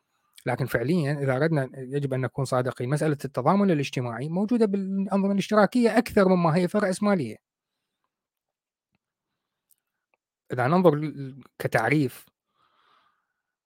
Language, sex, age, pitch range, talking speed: Arabic, male, 30-49, 130-175 Hz, 95 wpm